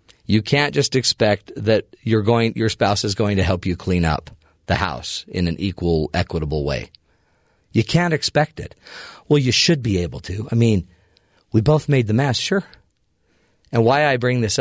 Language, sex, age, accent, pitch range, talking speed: English, male, 40-59, American, 105-155 Hz, 180 wpm